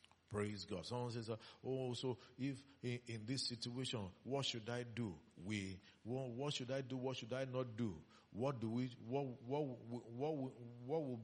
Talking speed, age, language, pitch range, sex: 200 wpm, 50-69, English, 95-130 Hz, male